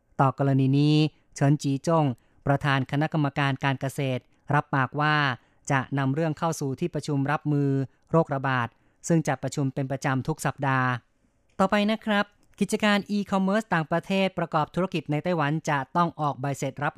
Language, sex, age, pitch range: Thai, female, 30-49, 135-155 Hz